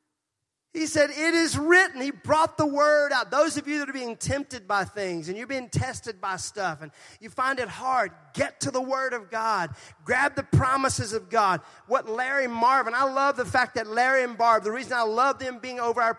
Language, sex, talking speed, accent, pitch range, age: English, male, 220 wpm, American, 220-280 Hz, 40-59